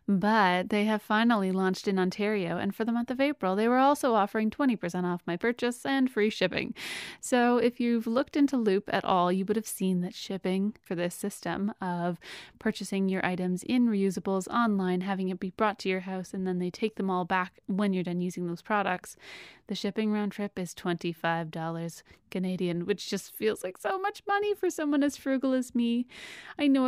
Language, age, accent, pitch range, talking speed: English, 30-49, American, 185-235 Hz, 200 wpm